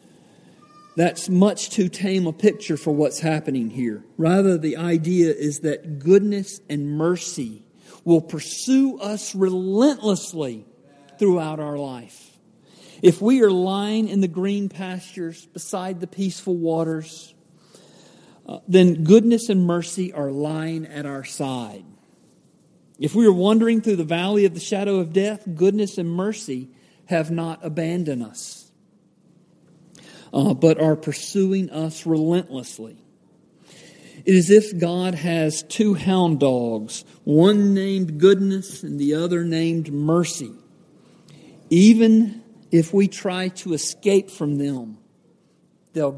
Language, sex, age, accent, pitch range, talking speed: English, male, 50-69, American, 155-195 Hz, 125 wpm